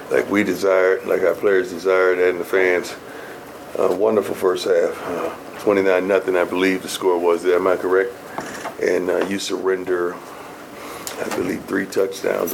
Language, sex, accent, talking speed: English, male, American, 160 wpm